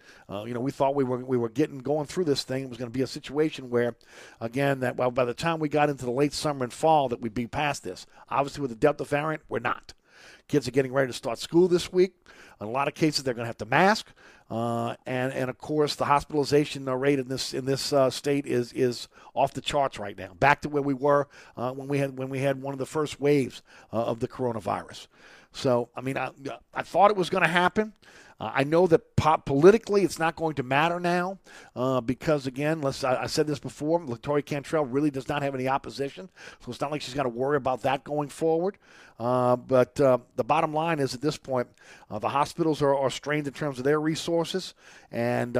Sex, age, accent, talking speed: male, 50-69, American, 245 wpm